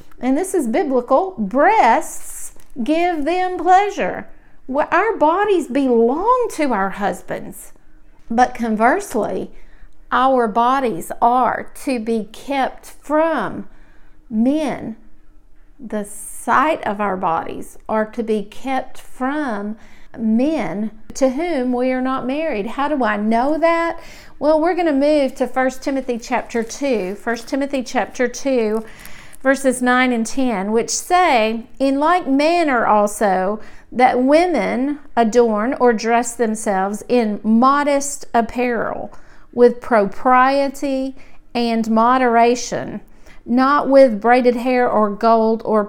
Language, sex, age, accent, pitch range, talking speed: English, female, 50-69, American, 225-275 Hz, 120 wpm